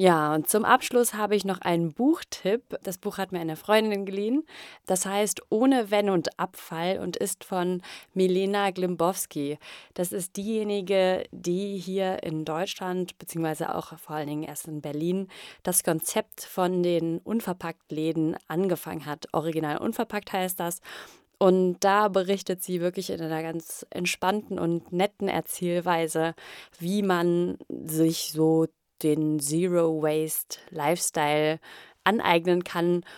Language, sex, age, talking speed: German, female, 30-49, 130 wpm